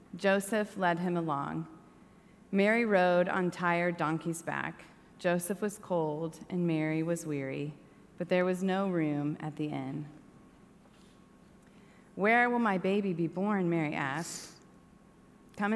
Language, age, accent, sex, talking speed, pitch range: English, 30-49, American, female, 130 wpm, 160-195 Hz